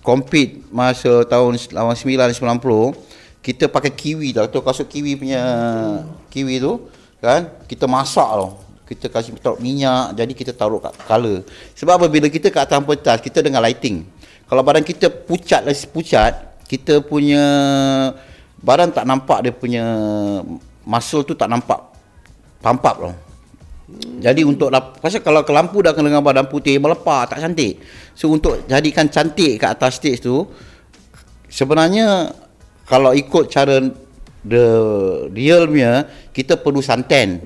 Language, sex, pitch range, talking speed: English, male, 110-145 Hz, 130 wpm